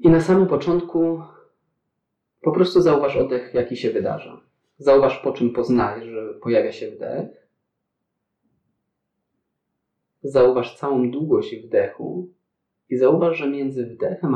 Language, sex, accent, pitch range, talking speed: Polish, male, native, 120-185 Hz, 115 wpm